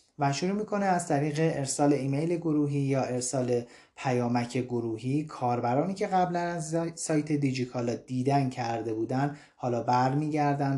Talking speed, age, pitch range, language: 135 wpm, 30-49, 120-145 Hz, Persian